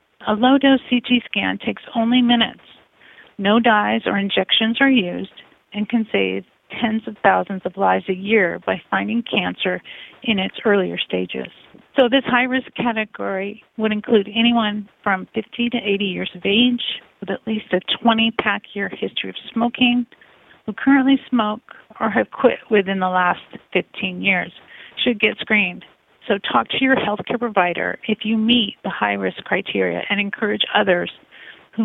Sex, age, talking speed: female, 40-59, 155 wpm